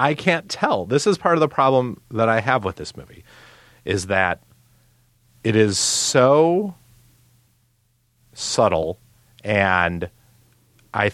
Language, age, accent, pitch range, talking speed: English, 30-49, American, 90-120 Hz, 125 wpm